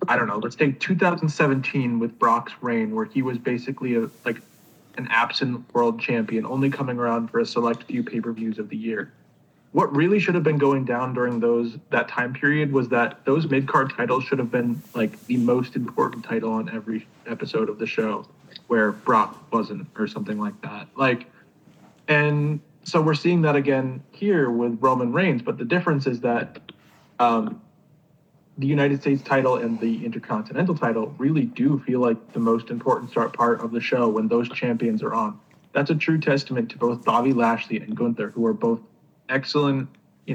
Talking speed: 185 wpm